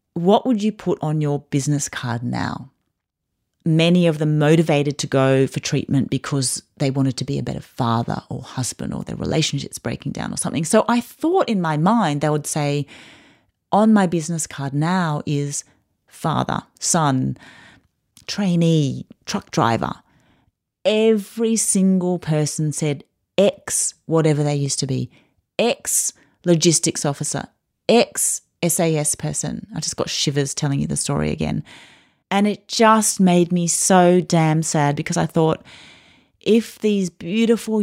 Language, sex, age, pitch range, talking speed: English, female, 30-49, 150-200 Hz, 150 wpm